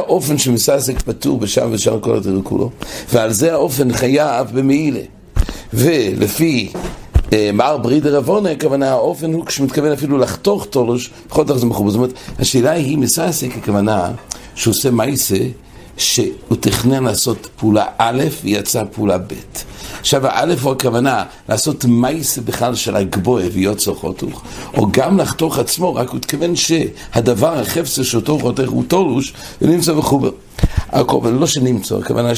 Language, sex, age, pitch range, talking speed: English, male, 60-79, 110-150 Hz, 130 wpm